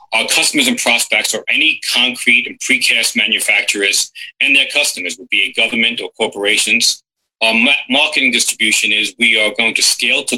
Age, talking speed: 40-59, 175 wpm